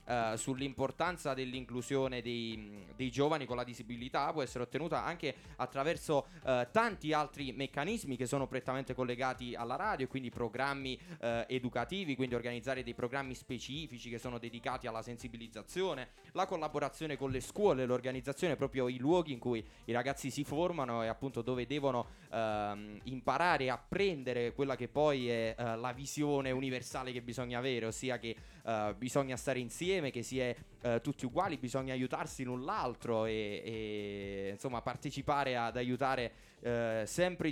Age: 20-39